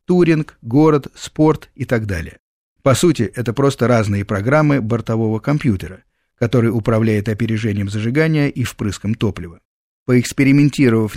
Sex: male